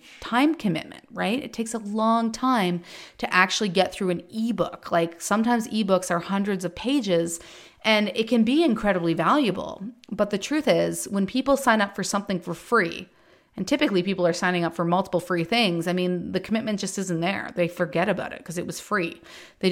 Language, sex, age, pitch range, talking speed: English, female, 30-49, 175-245 Hz, 200 wpm